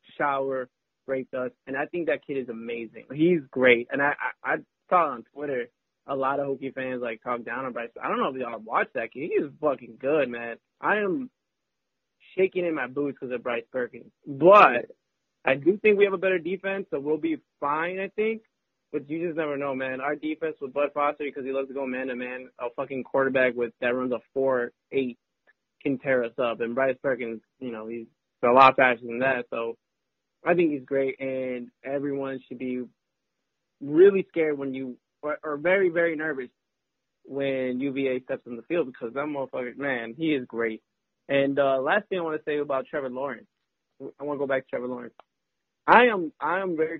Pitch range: 125-155 Hz